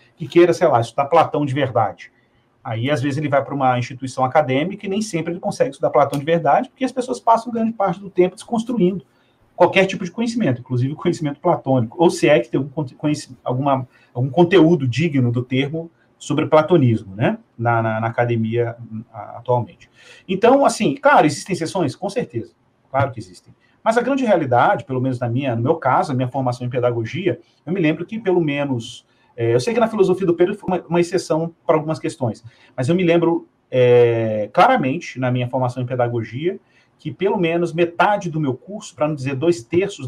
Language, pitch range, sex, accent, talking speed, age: Portuguese, 120-170 Hz, male, Brazilian, 195 wpm, 40-59